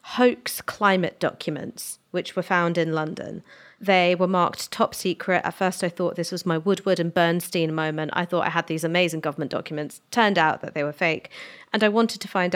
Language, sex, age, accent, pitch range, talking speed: English, female, 30-49, British, 170-215 Hz, 205 wpm